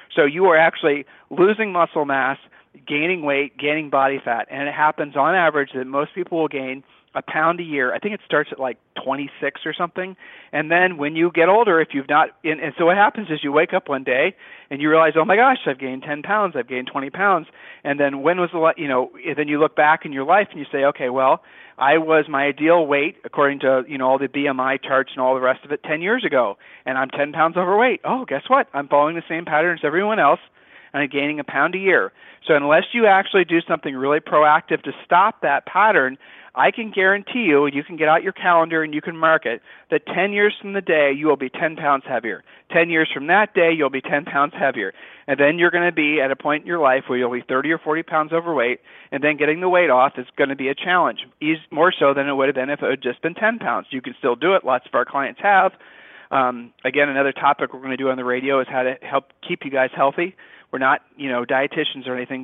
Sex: male